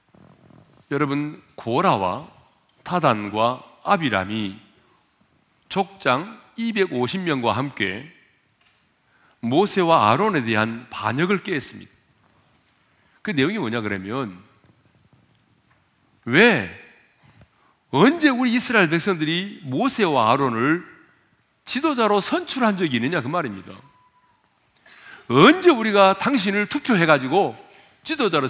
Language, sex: Korean, male